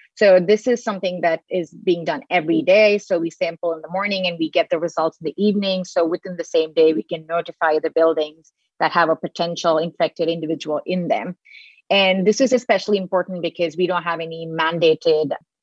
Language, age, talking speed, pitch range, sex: English, 30-49, 205 wpm, 165-190 Hz, female